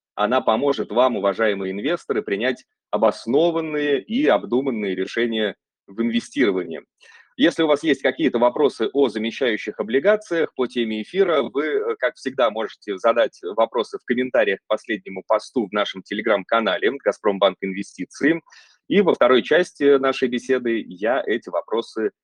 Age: 30-49